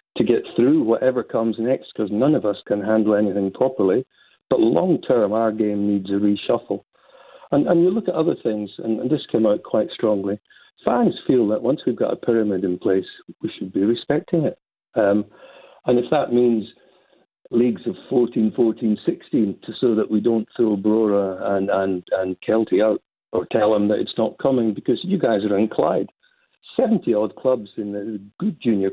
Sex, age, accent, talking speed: male, 60-79, British, 185 wpm